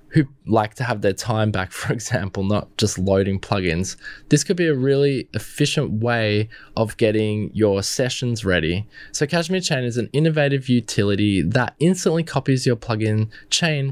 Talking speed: 165 wpm